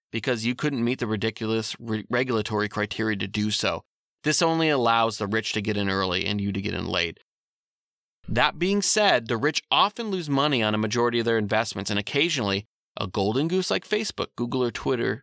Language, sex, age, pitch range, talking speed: English, male, 30-49, 105-135 Hz, 195 wpm